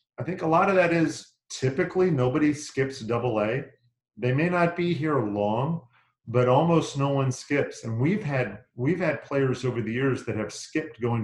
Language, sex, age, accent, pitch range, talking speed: English, male, 40-59, American, 120-140 Hz, 190 wpm